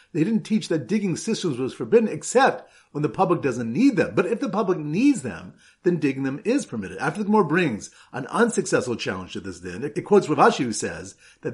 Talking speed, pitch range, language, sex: 220 wpm, 145-210 Hz, English, male